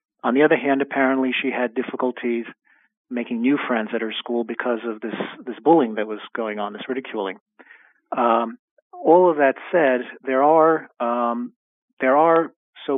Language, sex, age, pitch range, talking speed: English, male, 40-59, 115-140 Hz, 165 wpm